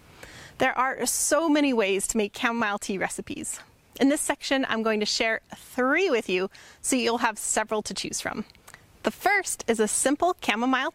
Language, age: English, 30-49